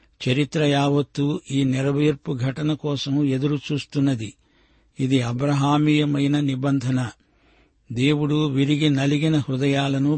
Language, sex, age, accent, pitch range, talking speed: Telugu, male, 60-79, native, 130-145 Hz, 75 wpm